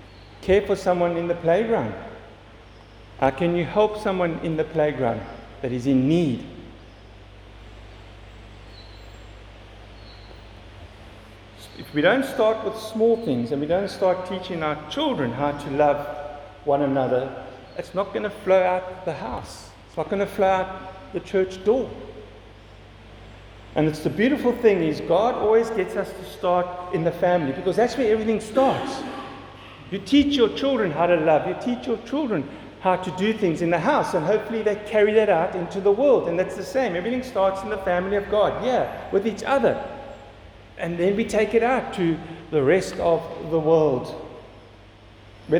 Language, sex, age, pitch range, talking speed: English, male, 50-69, 130-200 Hz, 170 wpm